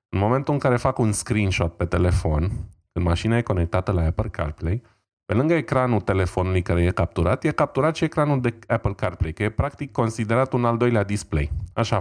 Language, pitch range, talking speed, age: Romanian, 90-120 Hz, 195 wpm, 20-39